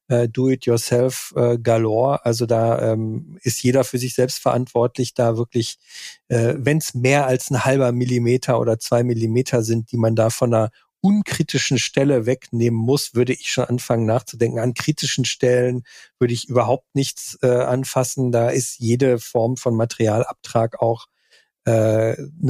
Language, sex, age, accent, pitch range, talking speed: German, male, 50-69, German, 115-130 Hz, 145 wpm